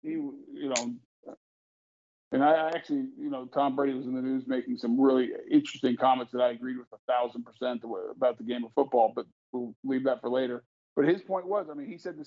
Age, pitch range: 50-69, 130-185 Hz